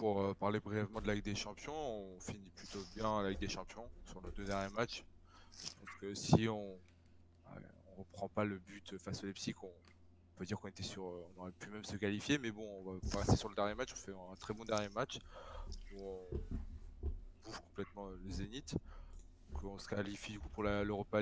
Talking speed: 210 wpm